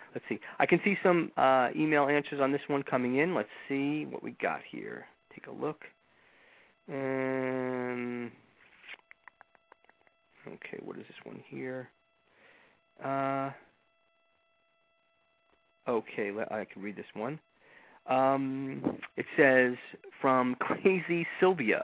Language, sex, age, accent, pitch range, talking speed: English, male, 40-59, American, 125-170 Hz, 120 wpm